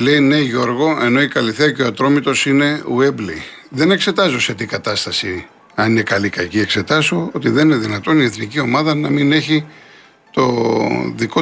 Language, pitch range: Greek, 120-150 Hz